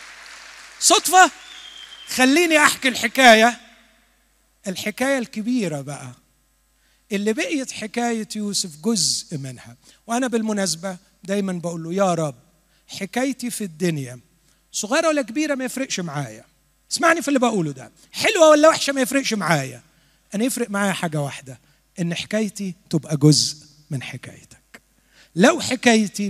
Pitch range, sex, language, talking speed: 155-250 Hz, male, Arabic, 120 wpm